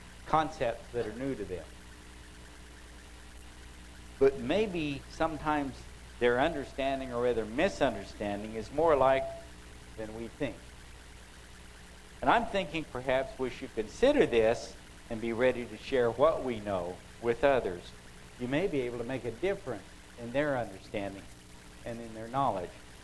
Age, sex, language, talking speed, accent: 60-79, male, English, 140 wpm, American